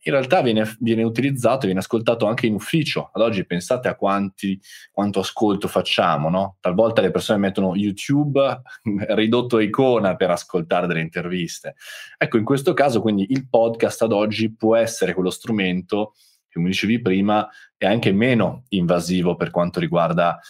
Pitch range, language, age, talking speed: 90-115 Hz, Italian, 20-39, 165 wpm